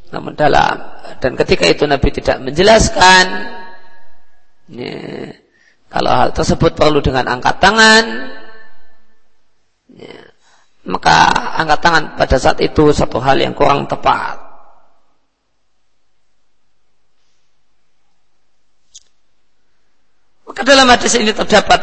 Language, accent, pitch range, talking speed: Indonesian, native, 145-190 Hz, 80 wpm